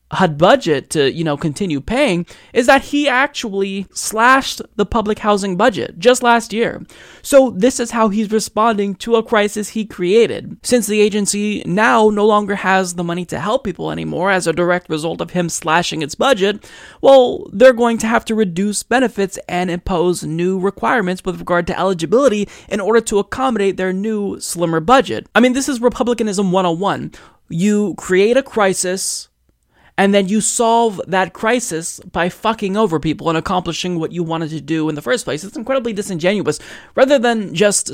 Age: 20-39